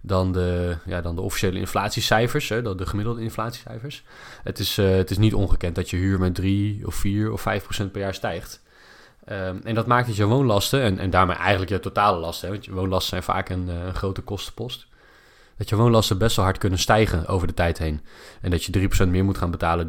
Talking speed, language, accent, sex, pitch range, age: 210 wpm, Dutch, Dutch, male, 90-105 Hz, 20-39